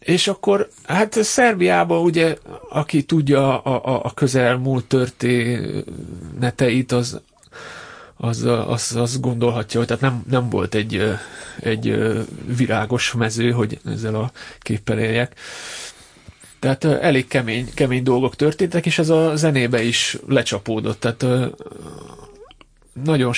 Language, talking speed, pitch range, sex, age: Hungarian, 115 wpm, 115-135 Hz, male, 30-49